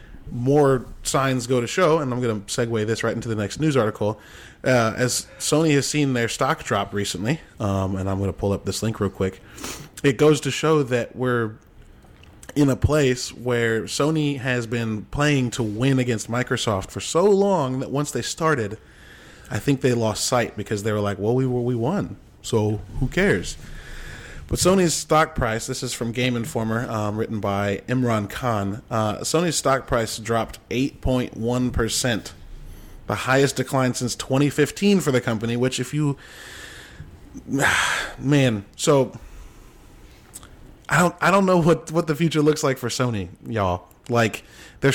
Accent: American